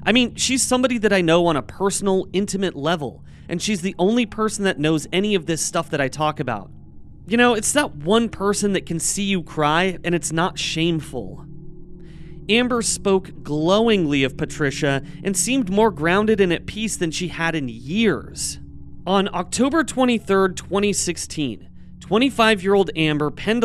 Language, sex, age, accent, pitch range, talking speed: English, male, 30-49, American, 150-200 Hz, 165 wpm